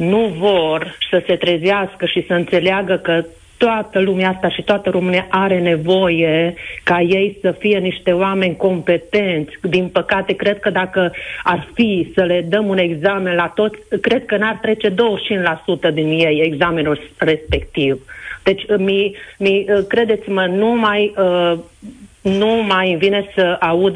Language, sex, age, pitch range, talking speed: Romanian, female, 40-59, 180-205 Hz, 140 wpm